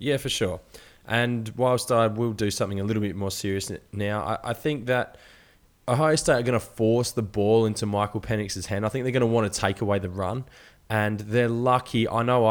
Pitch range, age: 105-120 Hz, 20-39